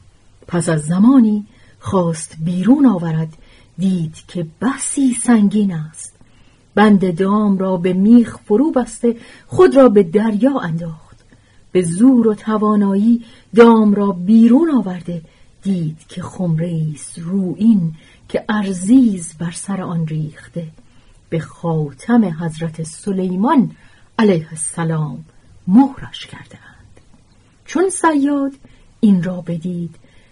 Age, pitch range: 40-59, 155-220 Hz